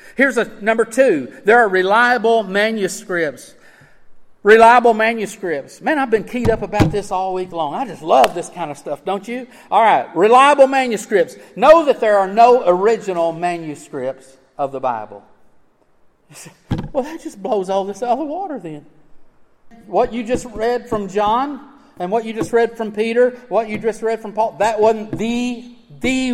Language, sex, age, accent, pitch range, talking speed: English, male, 50-69, American, 150-230 Hz, 175 wpm